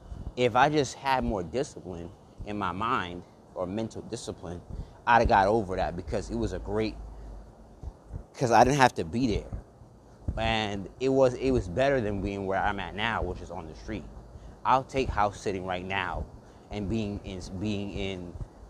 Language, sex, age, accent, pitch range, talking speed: English, male, 30-49, American, 95-115 Hz, 185 wpm